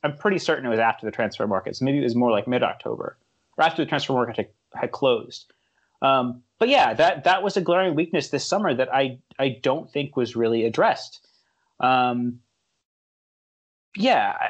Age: 30-49